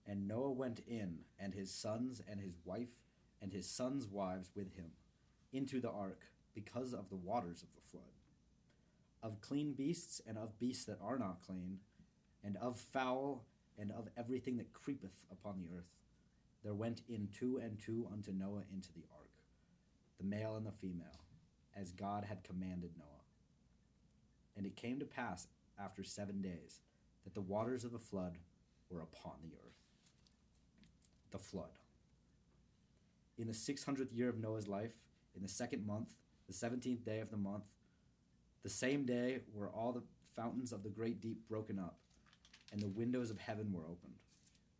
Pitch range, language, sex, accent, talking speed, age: 95-120 Hz, English, male, American, 165 wpm, 30-49